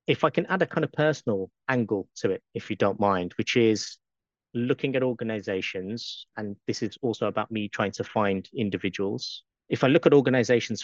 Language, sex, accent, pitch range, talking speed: English, male, British, 105-125 Hz, 195 wpm